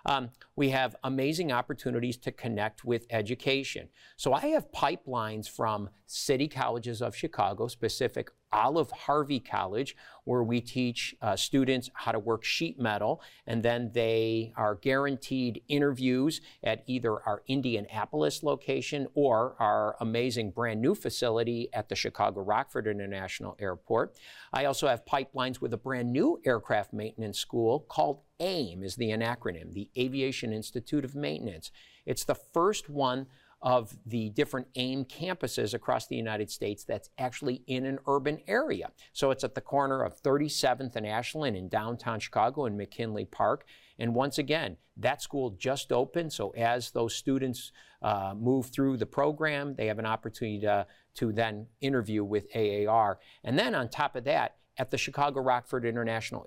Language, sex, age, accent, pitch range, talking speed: English, male, 50-69, American, 110-135 Hz, 155 wpm